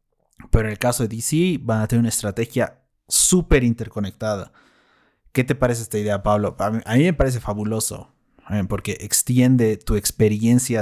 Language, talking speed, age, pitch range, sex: Spanish, 170 wpm, 30-49, 110-125 Hz, male